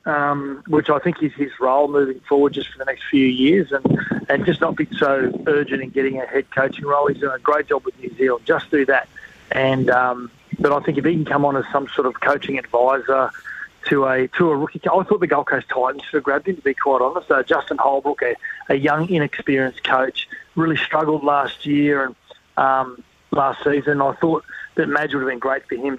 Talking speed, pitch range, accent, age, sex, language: 235 wpm, 135-155 Hz, Australian, 40-59, male, English